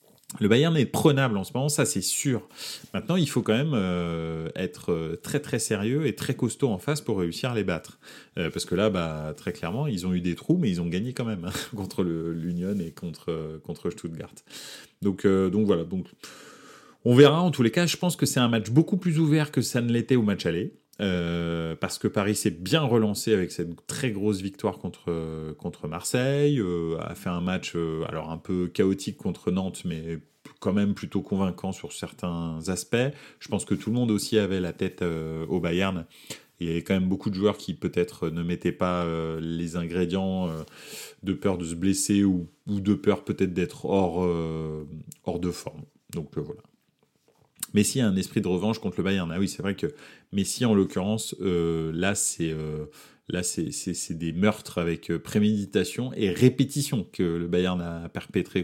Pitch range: 85-110 Hz